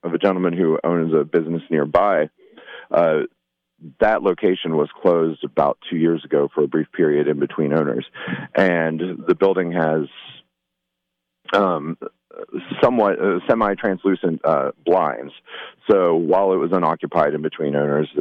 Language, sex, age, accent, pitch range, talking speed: English, male, 40-59, American, 75-95 Hz, 140 wpm